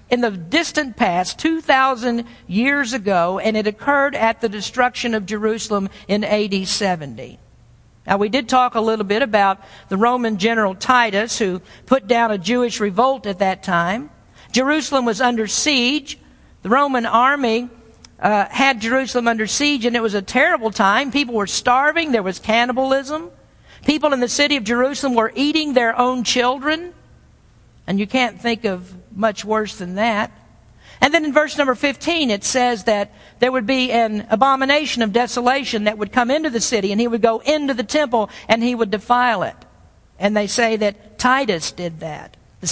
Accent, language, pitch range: American, English, 210-260 Hz